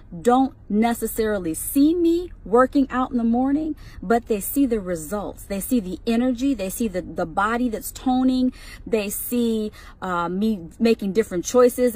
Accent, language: American, English